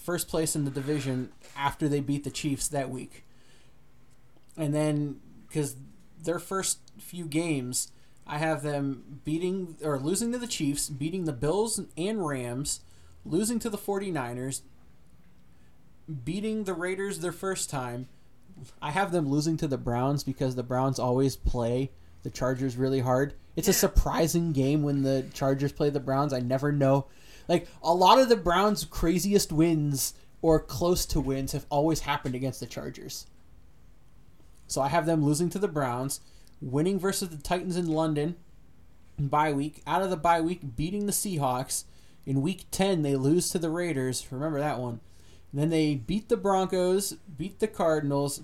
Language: English